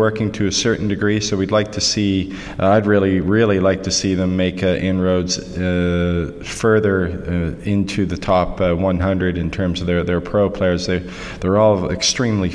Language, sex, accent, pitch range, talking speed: English, male, American, 85-95 Hz, 185 wpm